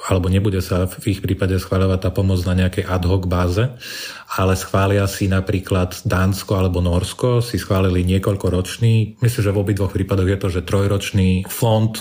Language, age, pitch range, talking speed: Slovak, 30-49, 90-105 Hz, 175 wpm